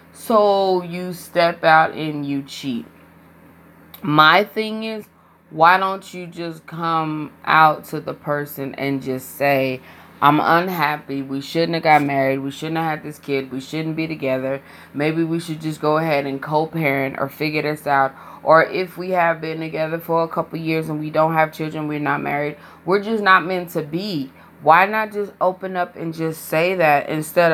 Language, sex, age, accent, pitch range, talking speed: English, female, 20-39, American, 145-175 Hz, 185 wpm